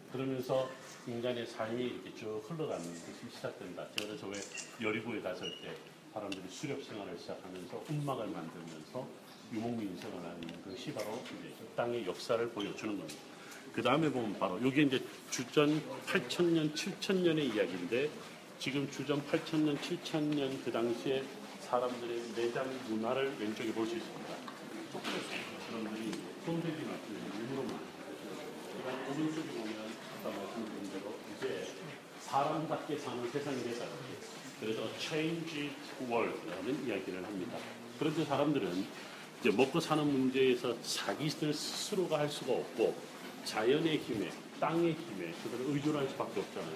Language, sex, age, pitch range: Korean, male, 40-59, 115-155 Hz